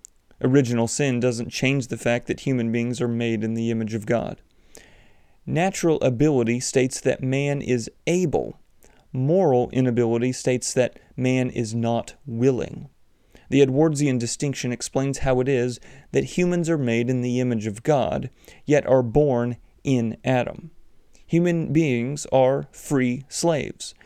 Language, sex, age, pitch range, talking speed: English, male, 30-49, 120-150 Hz, 140 wpm